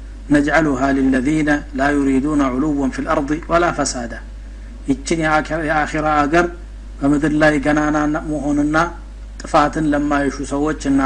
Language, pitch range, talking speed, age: Amharic, 140-165 Hz, 110 wpm, 60-79